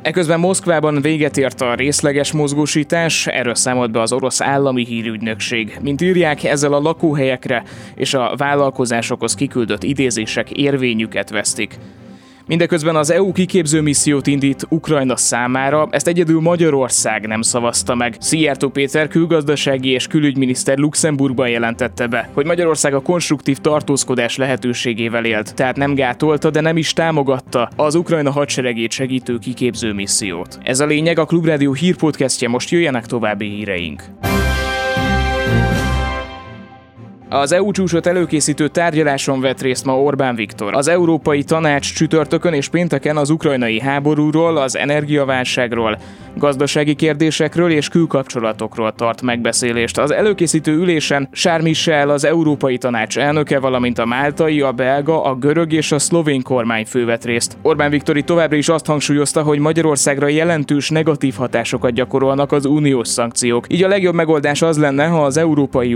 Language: Hungarian